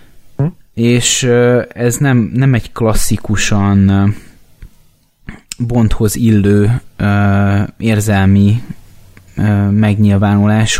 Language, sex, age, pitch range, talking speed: Hungarian, male, 20-39, 100-120 Hz, 55 wpm